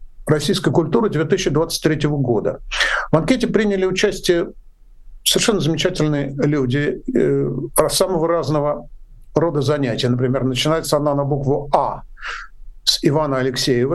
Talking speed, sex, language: 105 wpm, male, Russian